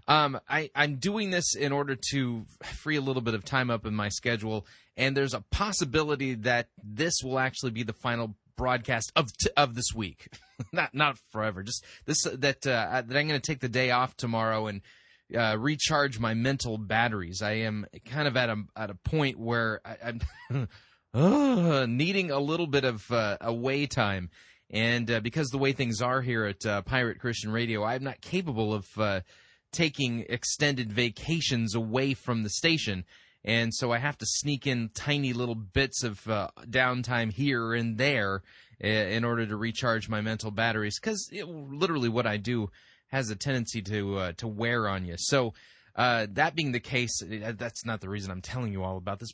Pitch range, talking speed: 110-140 Hz, 190 wpm